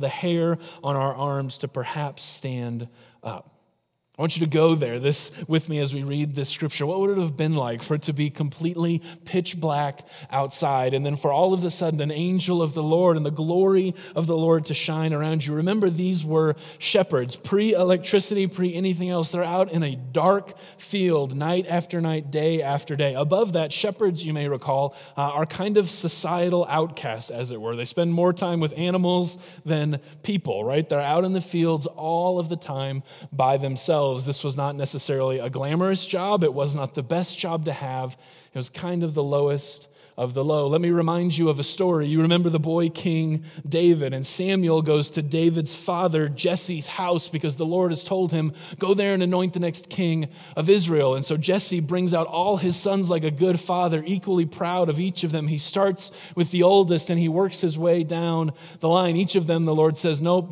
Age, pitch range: 30-49, 150-180 Hz